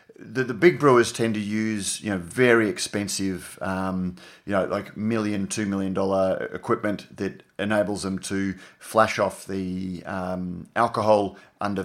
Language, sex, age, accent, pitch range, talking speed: English, male, 30-49, Australian, 95-115 Hz, 150 wpm